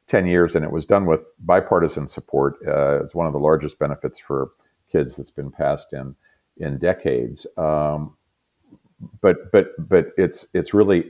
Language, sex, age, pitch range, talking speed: English, male, 50-69, 70-80 Hz, 170 wpm